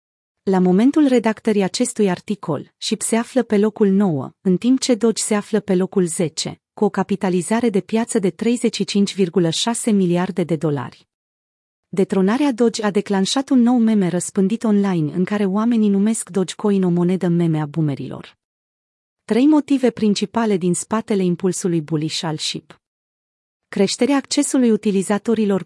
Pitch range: 185-225 Hz